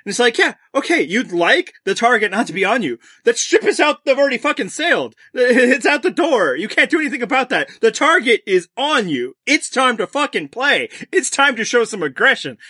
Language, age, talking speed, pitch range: English, 30-49, 225 wpm, 235-345 Hz